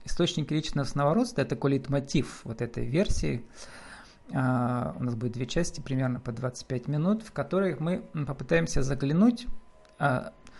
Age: 40-59